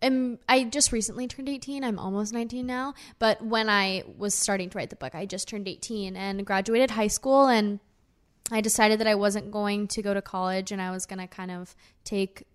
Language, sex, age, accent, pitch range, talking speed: English, female, 10-29, American, 190-225 Hz, 220 wpm